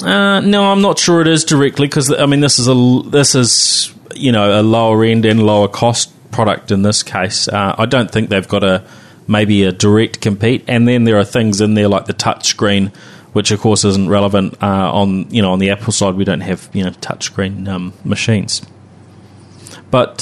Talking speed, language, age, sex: 230 wpm, English, 30-49, male